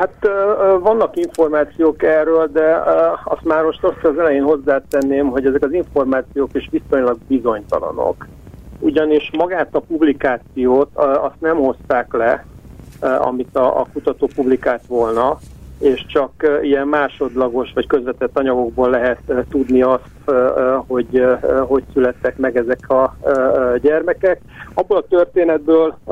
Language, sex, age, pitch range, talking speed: Hungarian, male, 50-69, 130-150 Hz, 120 wpm